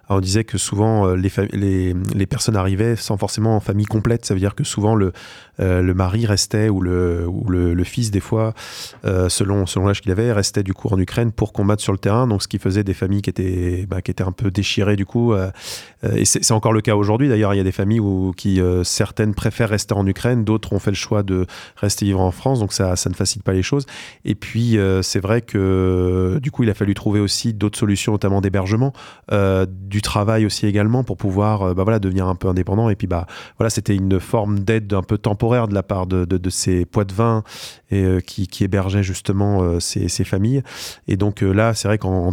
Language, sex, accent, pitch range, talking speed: French, male, French, 95-110 Hz, 240 wpm